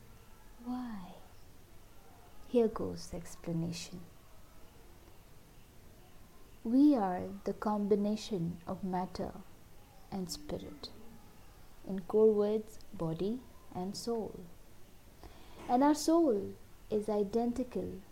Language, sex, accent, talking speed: English, female, Indian, 80 wpm